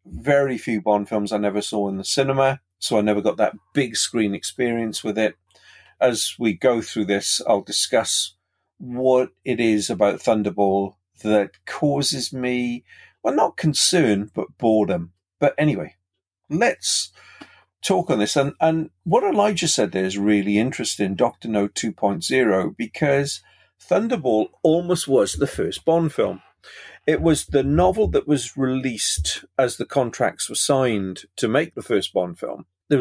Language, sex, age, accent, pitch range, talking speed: English, male, 50-69, British, 100-140 Hz, 155 wpm